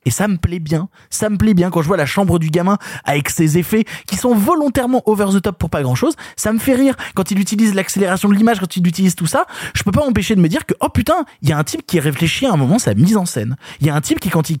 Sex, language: male, French